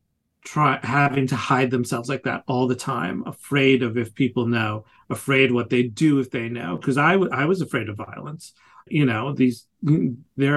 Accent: American